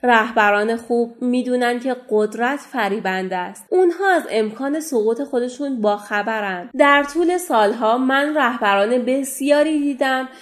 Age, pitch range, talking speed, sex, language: 30-49, 215-295 Hz, 120 wpm, female, Persian